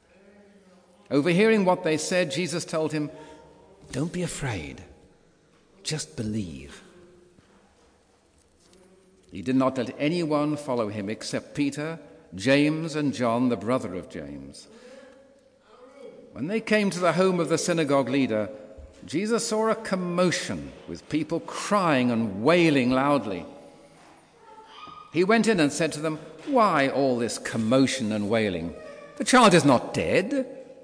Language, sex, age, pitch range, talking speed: English, male, 60-79, 120-185 Hz, 130 wpm